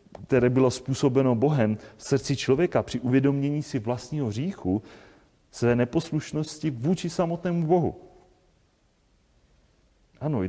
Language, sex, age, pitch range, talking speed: Czech, male, 30-49, 110-140 Hz, 110 wpm